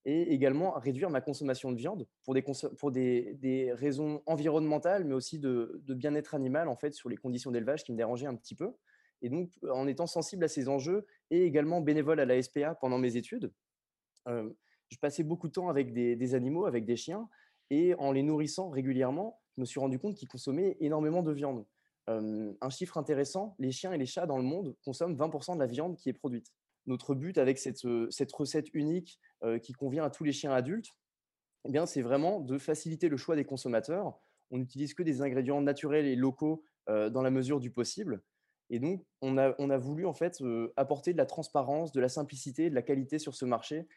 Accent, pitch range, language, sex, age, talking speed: French, 130-155 Hz, French, male, 20-39, 215 wpm